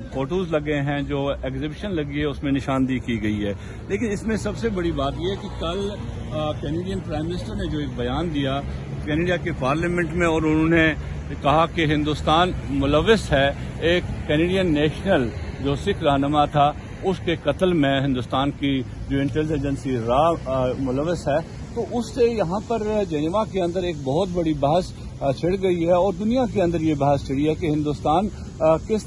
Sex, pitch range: male, 140-175 Hz